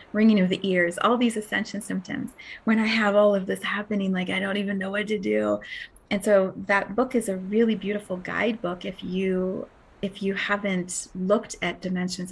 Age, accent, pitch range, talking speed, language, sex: 30-49, American, 195-245 Hz, 195 wpm, English, female